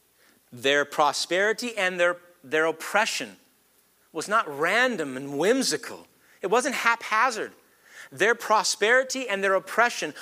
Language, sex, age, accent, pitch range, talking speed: English, male, 40-59, American, 155-215 Hz, 110 wpm